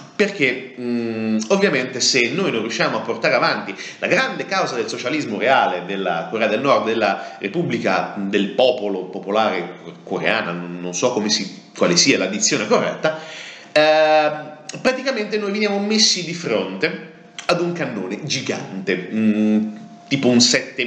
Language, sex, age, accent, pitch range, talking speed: Italian, male, 40-59, native, 105-175 Hz, 130 wpm